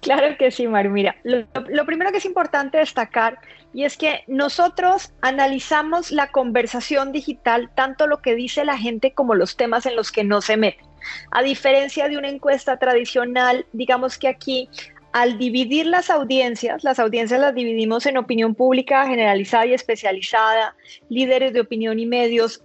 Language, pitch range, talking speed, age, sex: Spanish, 230-275 Hz, 165 wpm, 30-49, female